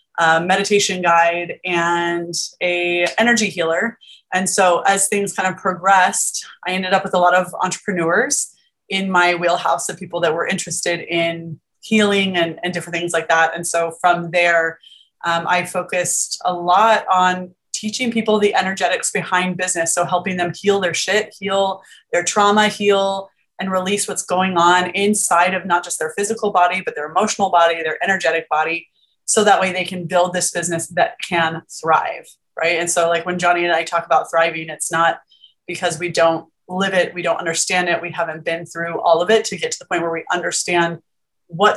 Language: English